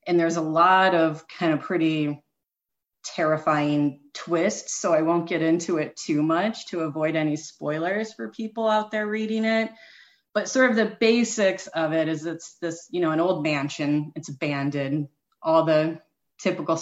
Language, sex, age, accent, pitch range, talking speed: English, female, 30-49, American, 155-190 Hz, 170 wpm